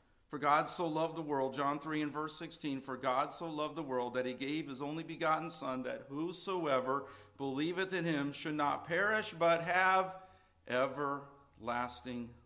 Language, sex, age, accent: English, male, 50-69, American